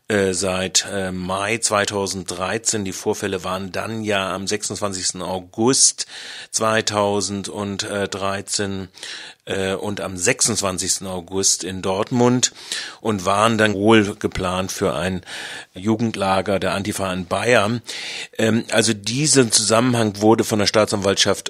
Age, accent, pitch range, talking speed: 40-59, German, 95-110 Hz, 110 wpm